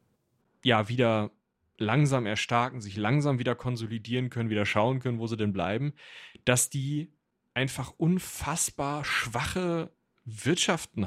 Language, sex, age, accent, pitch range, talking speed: German, male, 30-49, German, 115-155 Hz, 120 wpm